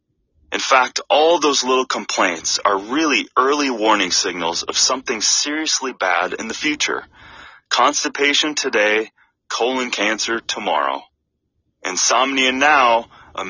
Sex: male